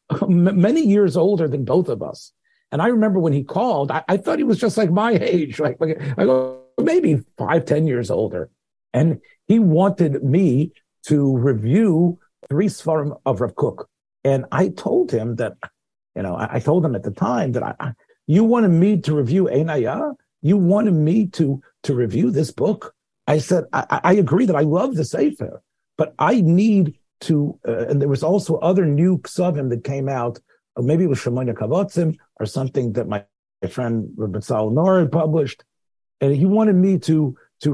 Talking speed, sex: 190 wpm, male